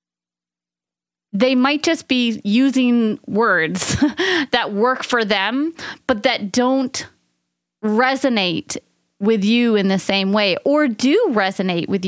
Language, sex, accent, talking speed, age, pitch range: English, female, American, 120 wpm, 30-49, 195-250 Hz